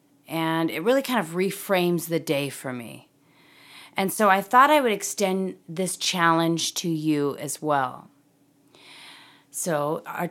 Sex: female